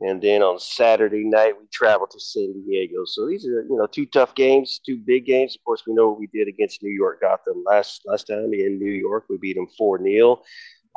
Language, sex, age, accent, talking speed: English, male, 30-49, American, 240 wpm